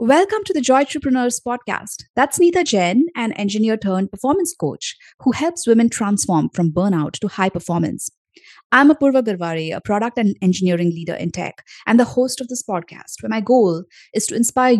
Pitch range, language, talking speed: 180-245 Hz, English, 170 wpm